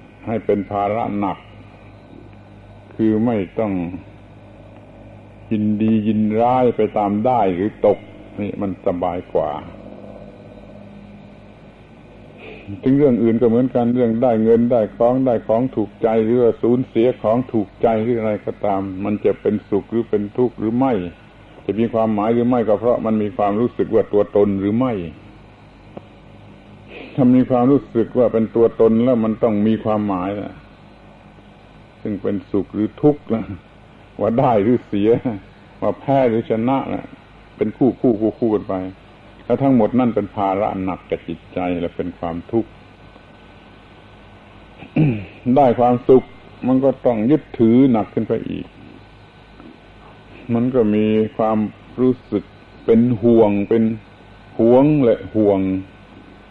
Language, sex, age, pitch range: Thai, male, 60-79, 100-120 Hz